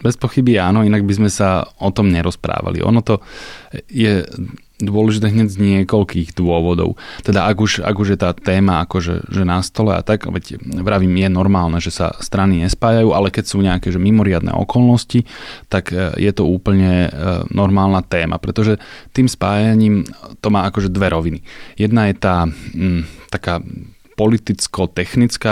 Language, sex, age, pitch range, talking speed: Slovak, male, 20-39, 90-105 Hz, 155 wpm